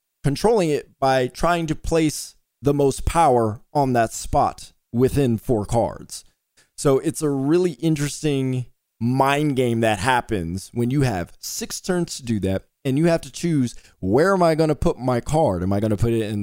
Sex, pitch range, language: male, 115-150 Hz, English